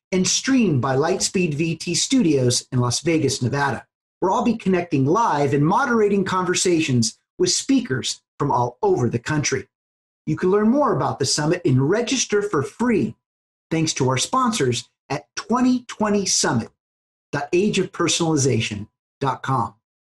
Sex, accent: male, American